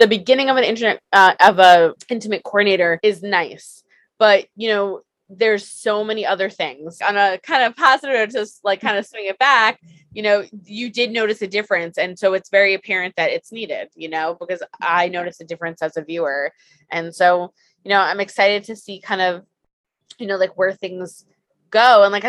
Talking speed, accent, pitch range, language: 200 wpm, American, 185-225 Hz, English